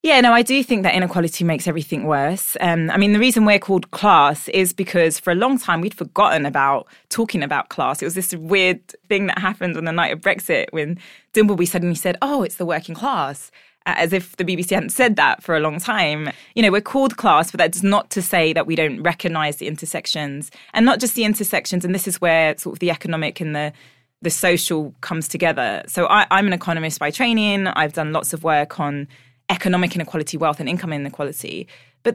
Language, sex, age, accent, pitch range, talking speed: English, female, 20-39, British, 160-205 Hz, 215 wpm